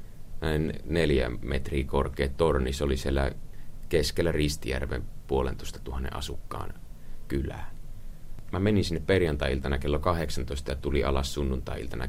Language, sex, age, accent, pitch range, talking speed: Finnish, male, 30-49, native, 70-90 Hz, 120 wpm